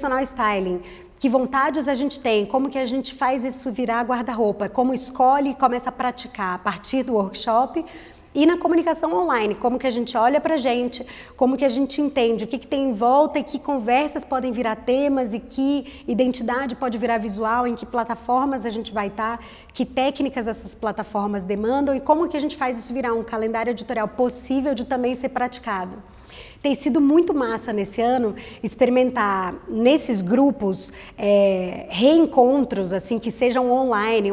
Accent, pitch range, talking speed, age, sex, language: Brazilian, 225-265 Hz, 180 wpm, 20-39, female, Portuguese